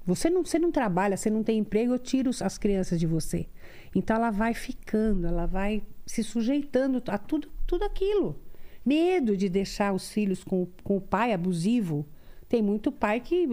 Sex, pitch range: female, 190-250 Hz